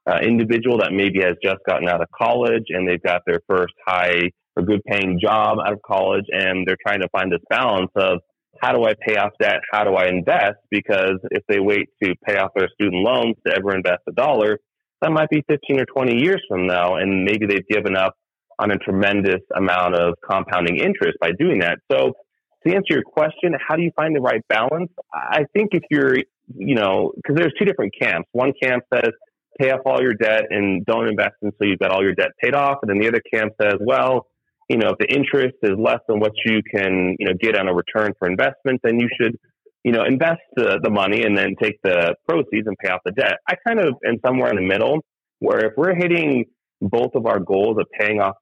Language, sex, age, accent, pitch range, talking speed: English, male, 30-49, American, 95-135 Hz, 230 wpm